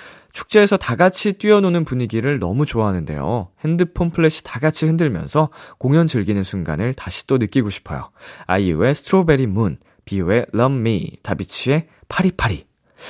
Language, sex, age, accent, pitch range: Korean, male, 20-39, native, 105-175 Hz